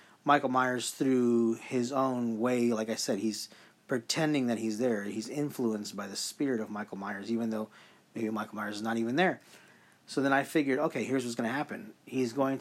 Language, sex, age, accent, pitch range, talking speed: English, male, 30-49, American, 115-140 Hz, 205 wpm